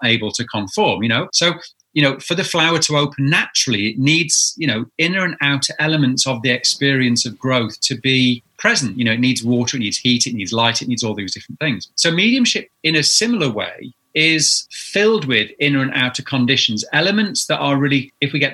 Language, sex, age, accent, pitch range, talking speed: English, male, 30-49, British, 120-150 Hz, 215 wpm